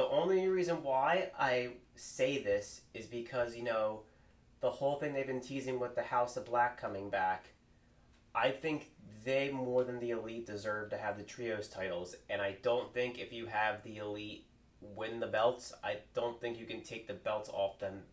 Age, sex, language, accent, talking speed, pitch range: 30-49, male, English, American, 195 wpm, 100-120 Hz